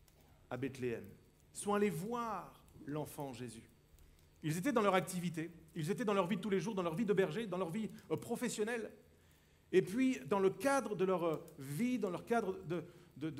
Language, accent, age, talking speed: French, French, 50-69, 195 wpm